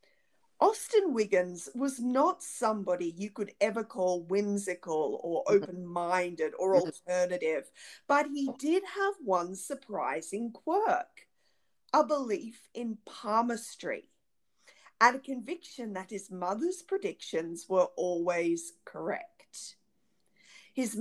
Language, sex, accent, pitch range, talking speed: English, female, Australian, 185-275 Hz, 105 wpm